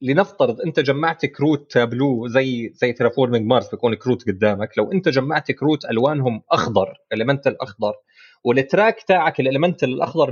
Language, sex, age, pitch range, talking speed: Arabic, male, 30-49, 125-180 Hz, 135 wpm